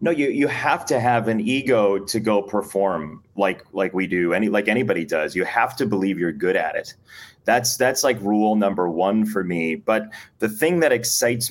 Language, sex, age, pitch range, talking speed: English, male, 30-49, 100-115 Hz, 210 wpm